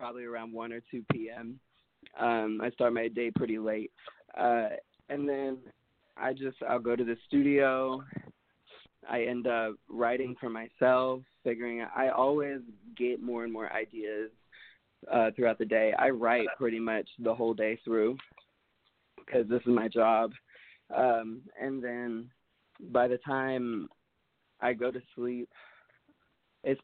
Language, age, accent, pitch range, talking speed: English, 20-39, American, 115-130 Hz, 145 wpm